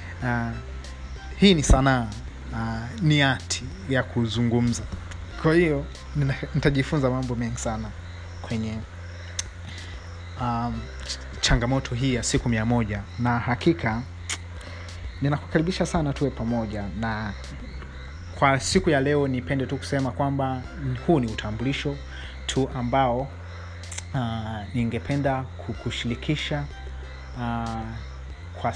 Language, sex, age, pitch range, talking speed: Swahili, male, 30-49, 90-140 Hz, 100 wpm